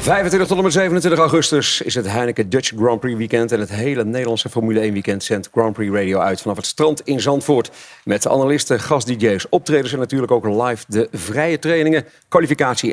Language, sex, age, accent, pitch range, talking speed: Dutch, male, 40-59, Dutch, 105-150 Hz, 195 wpm